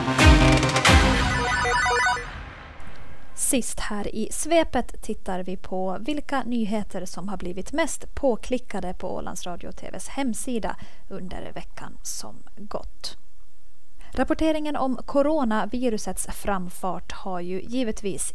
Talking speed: 100 wpm